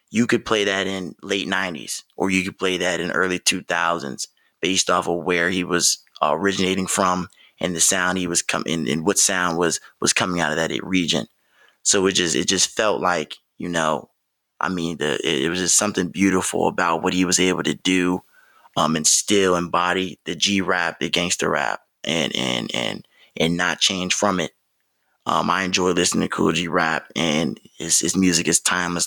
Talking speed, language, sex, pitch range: 205 wpm, English, male, 85-95 Hz